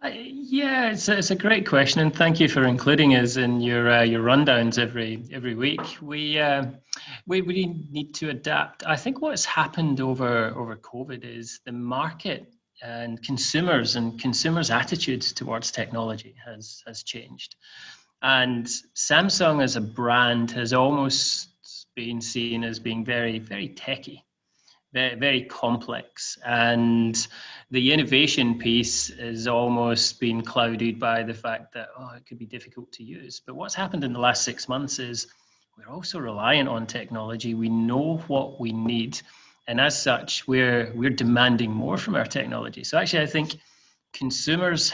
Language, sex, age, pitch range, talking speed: English, male, 30-49, 115-140 Hz, 155 wpm